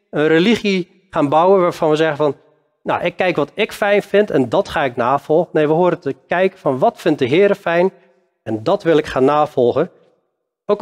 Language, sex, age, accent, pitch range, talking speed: Dutch, male, 40-59, Dutch, 150-195 Hz, 210 wpm